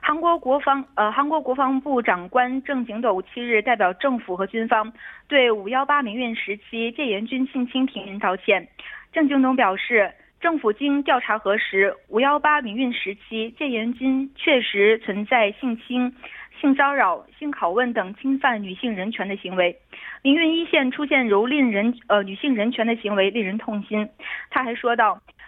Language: Korean